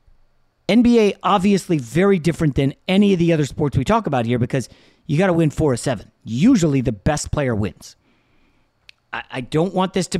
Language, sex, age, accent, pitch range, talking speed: English, male, 40-59, American, 125-170 Hz, 195 wpm